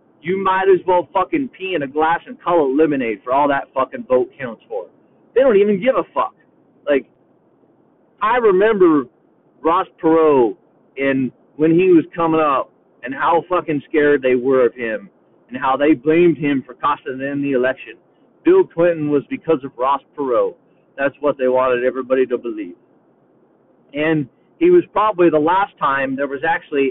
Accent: American